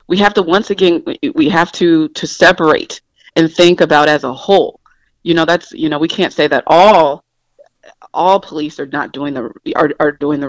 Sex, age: female, 40-59